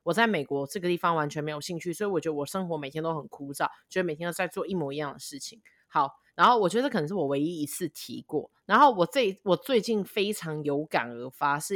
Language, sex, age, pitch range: Chinese, female, 20-39, 155-215 Hz